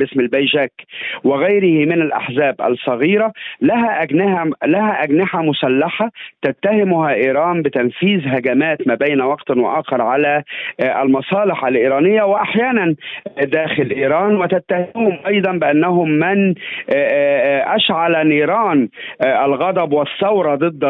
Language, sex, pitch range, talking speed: Arabic, male, 135-180 Hz, 100 wpm